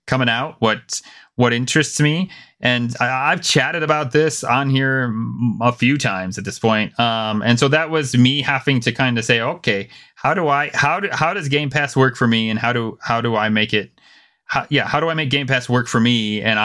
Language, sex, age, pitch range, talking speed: English, male, 30-49, 120-160 Hz, 230 wpm